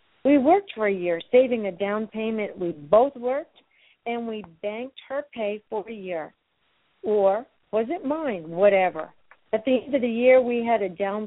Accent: American